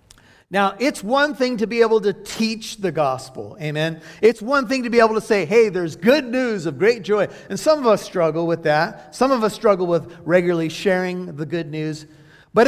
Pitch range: 165-225 Hz